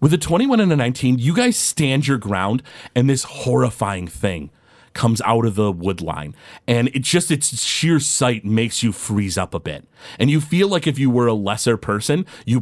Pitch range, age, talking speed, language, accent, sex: 100-130 Hz, 30-49, 210 wpm, English, American, male